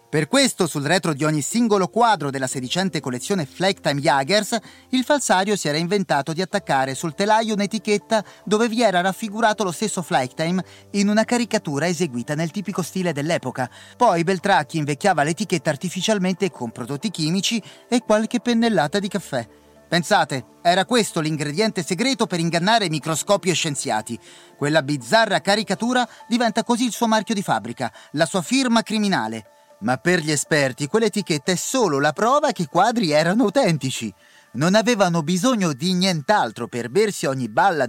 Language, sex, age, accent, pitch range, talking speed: Italian, male, 30-49, native, 140-215 Hz, 155 wpm